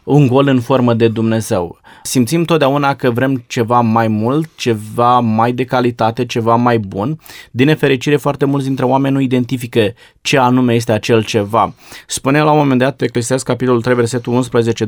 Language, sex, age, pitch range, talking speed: Romanian, male, 20-39, 115-145 Hz, 175 wpm